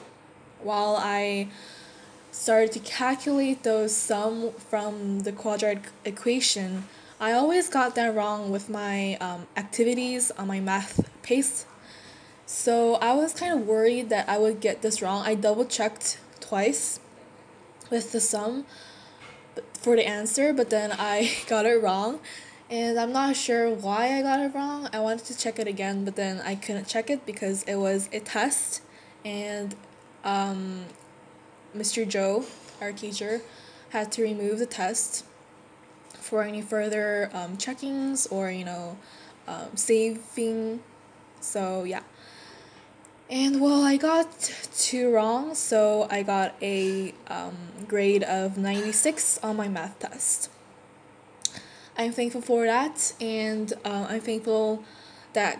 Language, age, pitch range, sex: Korean, 10-29, 200-235 Hz, female